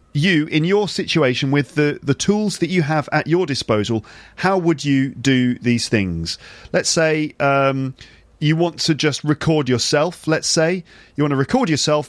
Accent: British